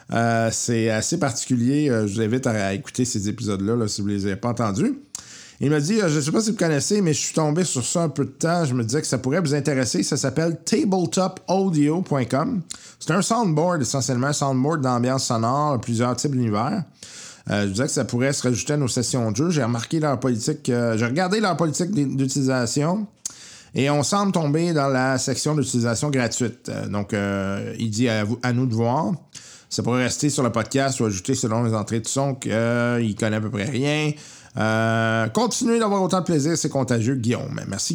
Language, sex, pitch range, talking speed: French, male, 115-150 Hz, 215 wpm